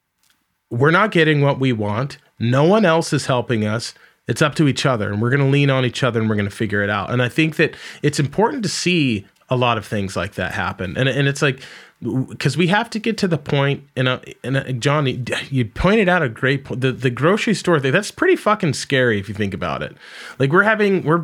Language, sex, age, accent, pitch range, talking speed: English, male, 30-49, American, 120-165 Hz, 245 wpm